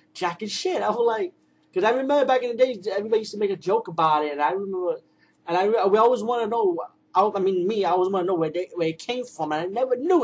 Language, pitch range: English, 155-195 Hz